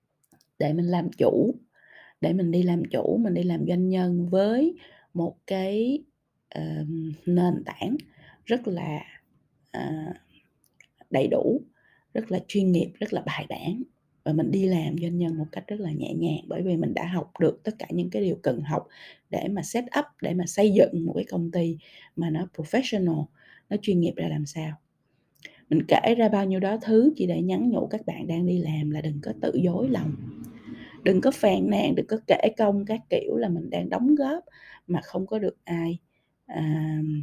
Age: 20-39